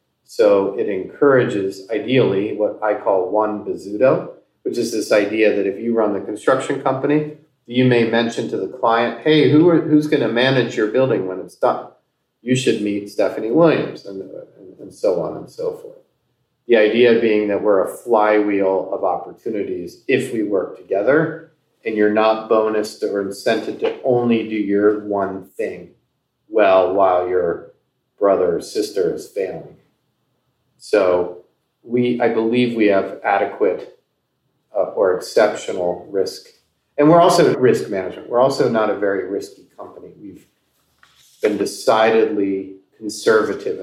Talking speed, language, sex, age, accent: 150 wpm, English, male, 40-59, American